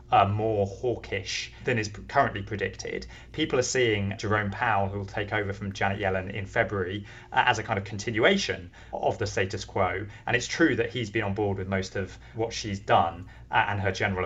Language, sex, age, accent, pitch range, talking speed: English, male, 20-39, British, 95-115 Hz, 205 wpm